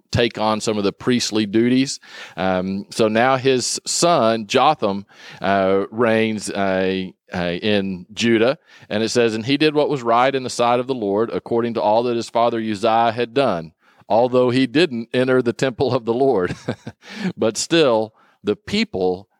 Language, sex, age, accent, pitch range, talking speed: English, male, 40-59, American, 100-125 Hz, 175 wpm